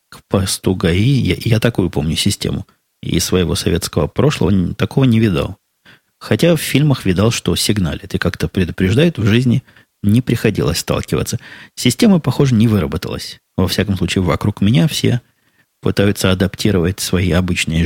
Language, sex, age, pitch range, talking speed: Russian, male, 20-39, 90-105 Hz, 140 wpm